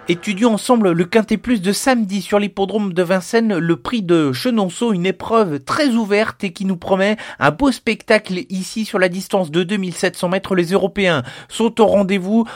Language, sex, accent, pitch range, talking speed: French, male, French, 175-210 Hz, 180 wpm